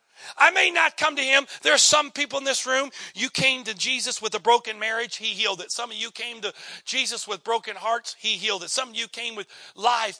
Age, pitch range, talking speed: 40-59, 210-275 Hz, 245 wpm